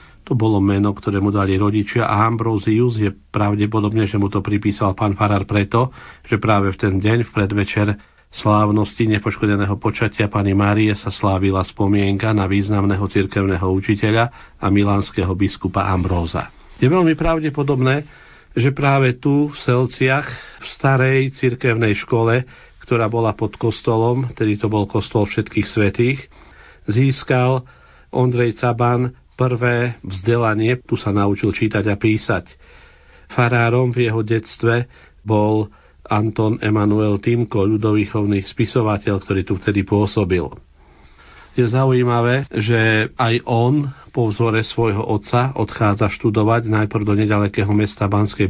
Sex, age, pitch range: male, 50-69, 100-120 Hz